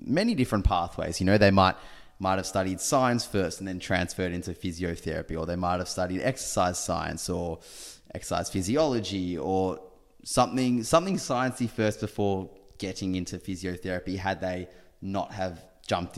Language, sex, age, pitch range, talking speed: English, male, 20-39, 90-105 Hz, 150 wpm